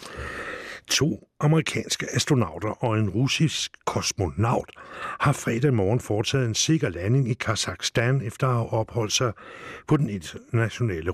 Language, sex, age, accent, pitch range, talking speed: English, male, 60-79, Danish, 100-130 Hz, 130 wpm